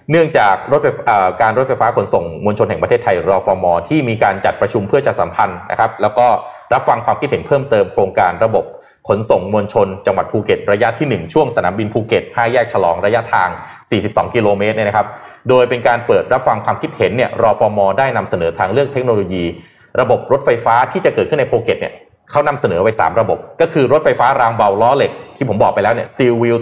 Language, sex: Thai, male